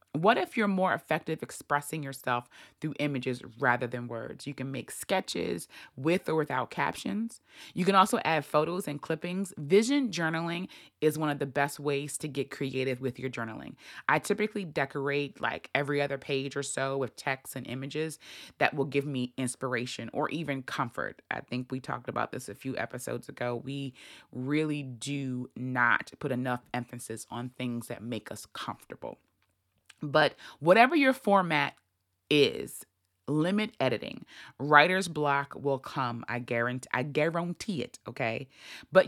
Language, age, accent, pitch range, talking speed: English, 20-39, American, 130-175 Hz, 155 wpm